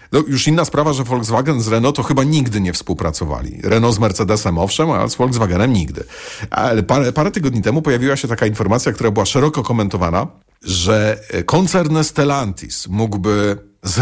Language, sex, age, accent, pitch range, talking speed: Polish, male, 40-59, native, 105-140 Hz, 165 wpm